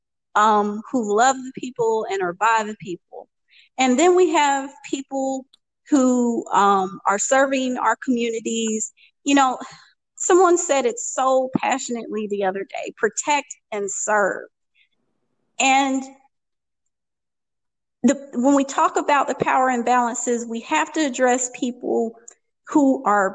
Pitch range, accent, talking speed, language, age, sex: 215-275 Hz, American, 130 wpm, English, 30-49, female